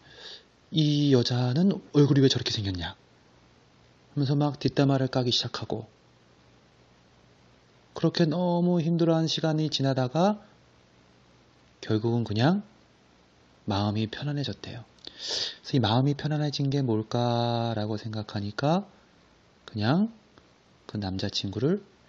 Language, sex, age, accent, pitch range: Korean, male, 30-49, native, 100-140 Hz